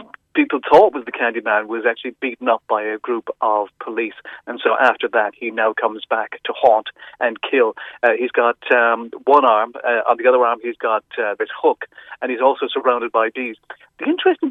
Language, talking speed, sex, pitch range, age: English, 205 wpm, male, 120-190 Hz, 40-59